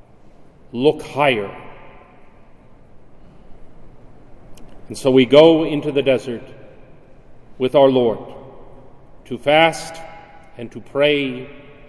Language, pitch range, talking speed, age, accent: English, 135-190 Hz, 85 wpm, 40-59, American